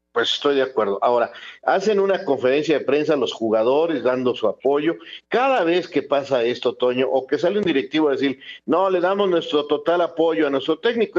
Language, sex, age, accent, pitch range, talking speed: Spanish, male, 50-69, Mexican, 130-190 Hz, 200 wpm